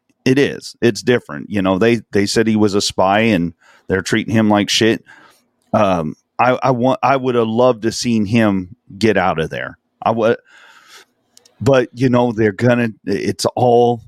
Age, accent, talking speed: 40-59, American, 185 wpm